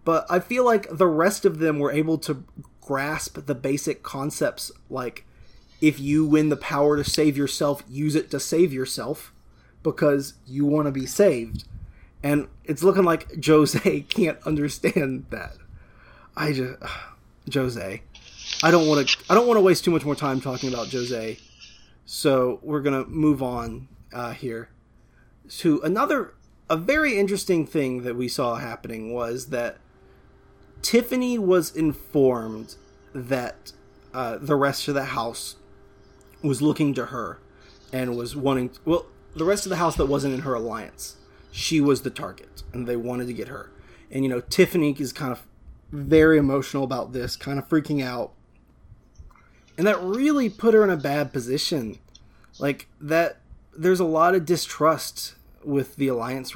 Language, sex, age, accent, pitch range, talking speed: English, male, 30-49, American, 120-160 Hz, 160 wpm